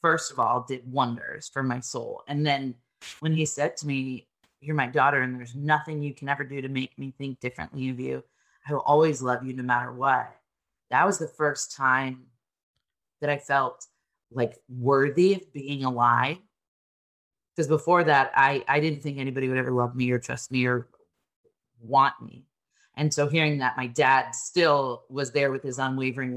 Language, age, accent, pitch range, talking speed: English, 30-49, American, 125-145 Hz, 190 wpm